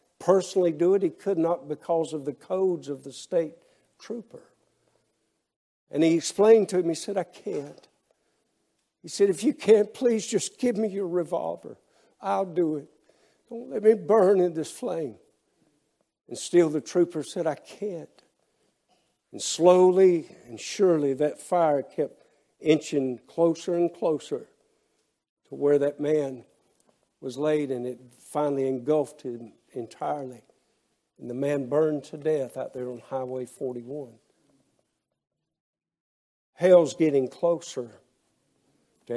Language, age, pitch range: English, 60-79, 145-185 Hz